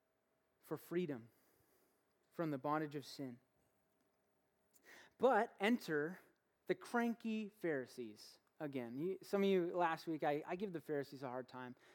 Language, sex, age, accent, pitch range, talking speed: English, male, 30-49, American, 155-245 Hz, 130 wpm